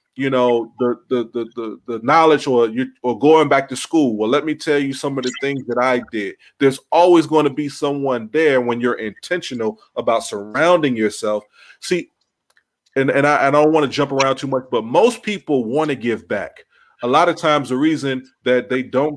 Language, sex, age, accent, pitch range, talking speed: English, male, 30-49, American, 120-150 Hz, 215 wpm